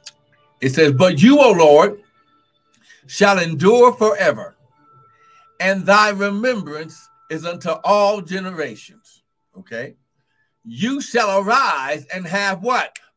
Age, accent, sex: 60-79, American, male